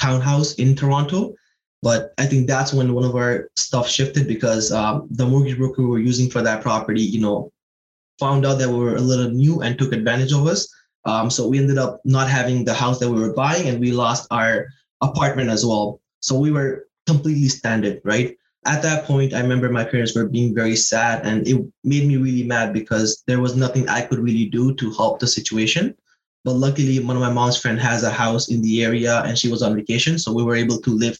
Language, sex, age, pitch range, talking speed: English, male, 20-39, 115-135 Hz, 225 wpm